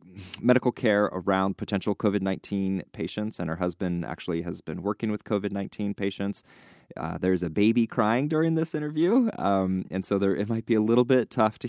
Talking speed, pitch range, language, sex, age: 185 wpm, 85-100 Hz, English, male, 20-39